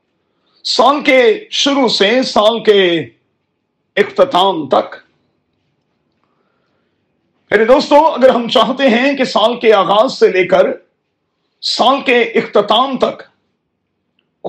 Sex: male